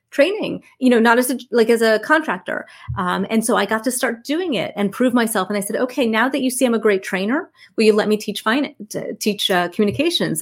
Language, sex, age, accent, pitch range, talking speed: English, female, 30-49, American, 190-235 Hz, 250 wpm